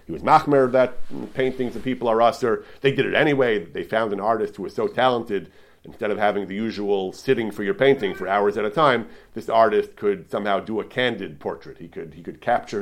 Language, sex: English, male